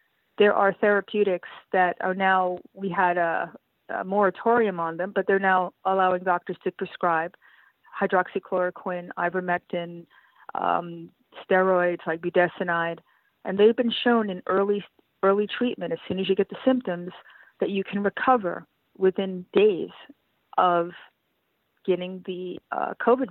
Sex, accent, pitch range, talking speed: female, American, 180-210 Hz, 135 wpm